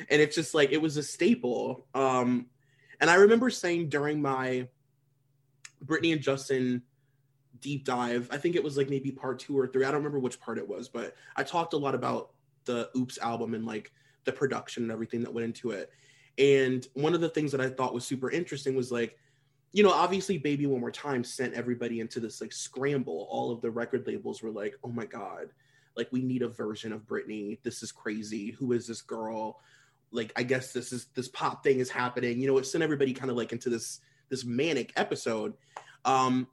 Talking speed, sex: 215 wpm, male